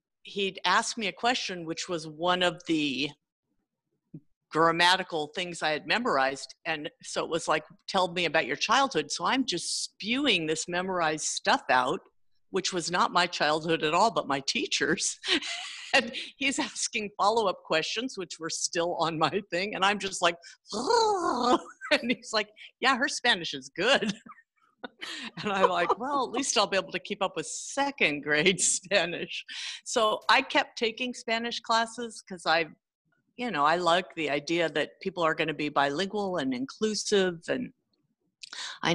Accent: American